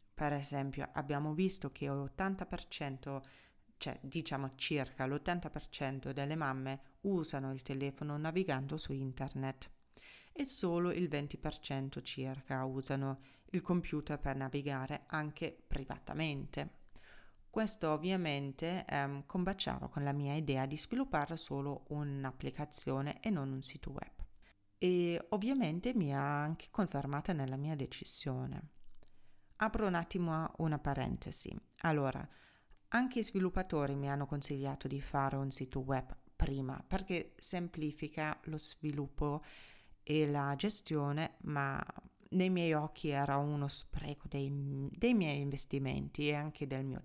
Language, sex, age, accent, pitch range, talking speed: Italian, female, 30-49, native, 135-170 Hz, 120 wpm